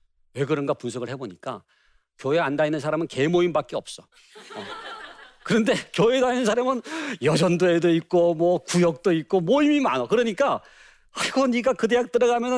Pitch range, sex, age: 135-225 Hz, male, 40-59